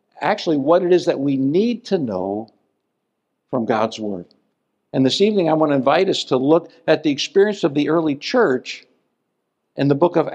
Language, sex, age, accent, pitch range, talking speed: English, male, 60-79, American, 135-180 Hz, 190 wpm